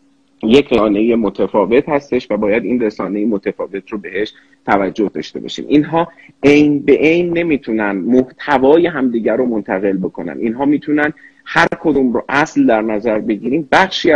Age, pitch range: 30-49, 115-145 Hz